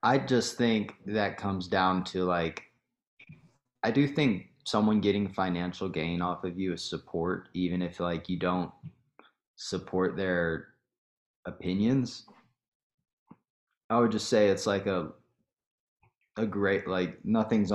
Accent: American